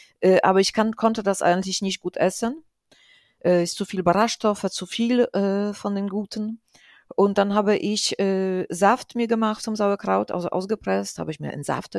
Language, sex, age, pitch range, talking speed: German, female, 40-59, 175-215 Hz, 195 wpm